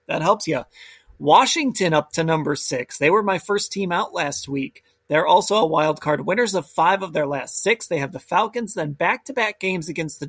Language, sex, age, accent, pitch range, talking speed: English, male, 30-49, American, 140-190 Hz, 225 wpm